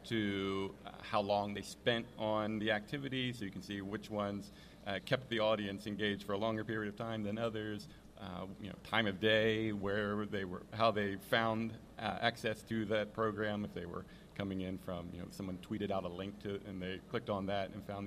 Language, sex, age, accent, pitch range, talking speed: English, male, 40-59, American, 95-110 Hz, 225 wpm